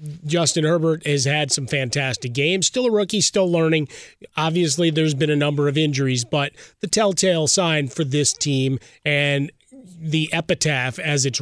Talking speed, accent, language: 165 wpm, American, English